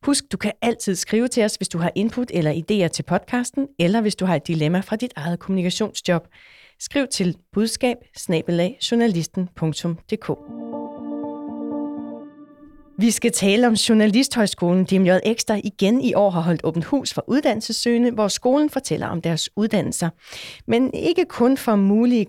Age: 30-49